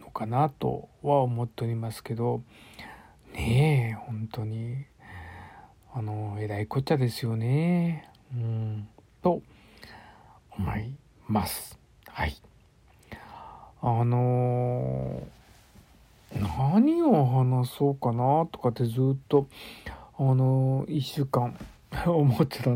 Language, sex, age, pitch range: Japanese, male, 50-69, 115-145 Hz